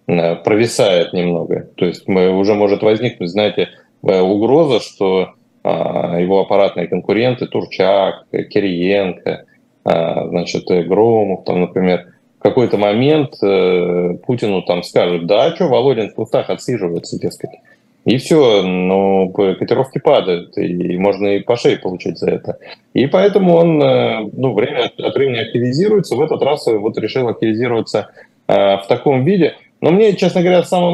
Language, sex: Russian, male